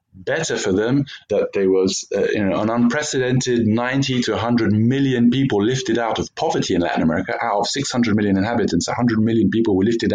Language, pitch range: English, 110-150 Hz